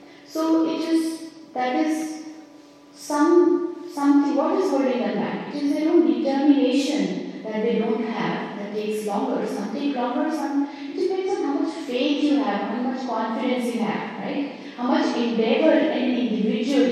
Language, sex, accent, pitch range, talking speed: English, female, Indian, 210-285 Hz, 160 wpm